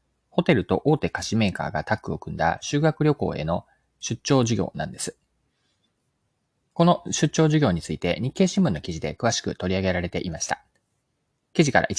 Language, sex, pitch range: Japanese, male, 90-135 Hz